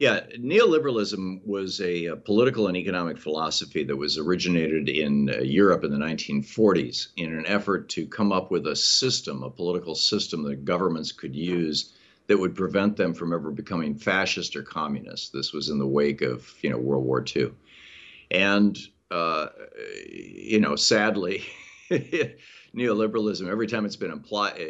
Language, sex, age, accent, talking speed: English, male, 50-69, American, 160 wpm